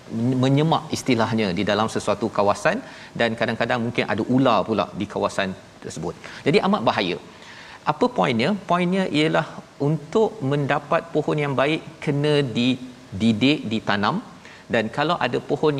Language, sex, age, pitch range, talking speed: Malayalam, male, 40-59, 115-150 Hz, 130 wpm